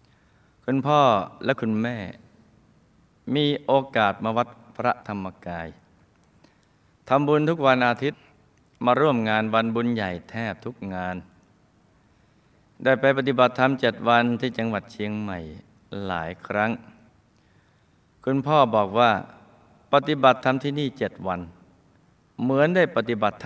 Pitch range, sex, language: 105-130 Hz, male, Thai